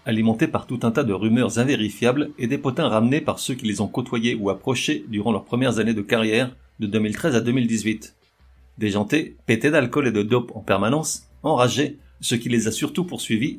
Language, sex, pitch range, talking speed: French, male, 105-130 Hz, 200 wpm